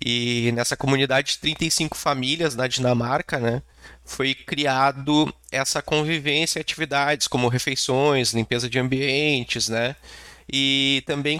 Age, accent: 20-39, Brazilian